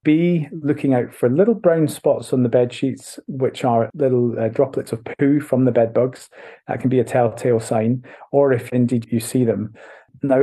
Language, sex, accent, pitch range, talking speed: English, male, British, 115-145 Hz, 200 wpm